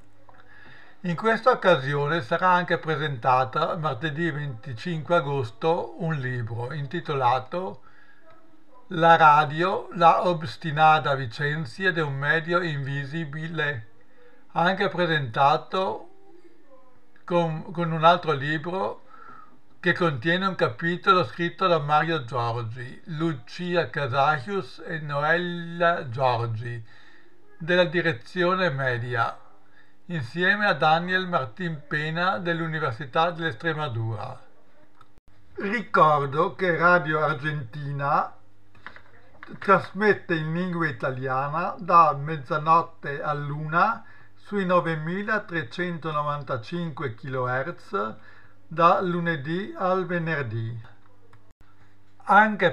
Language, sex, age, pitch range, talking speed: Italian, male, 60-79, 135-175 Hz, 80 wpm